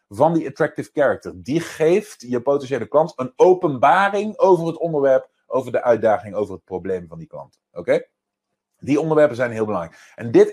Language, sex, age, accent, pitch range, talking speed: Dutch, male, 30-49, Dutch, 125-180 Hz, 180 wpm